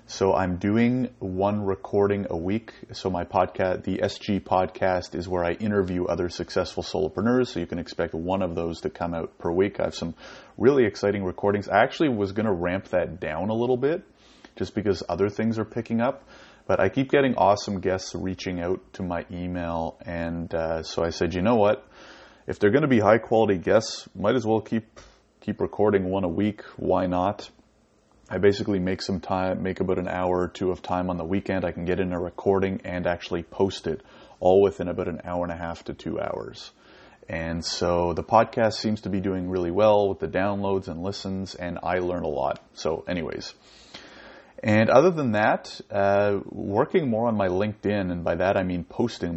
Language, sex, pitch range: English, male, 90-105 Hz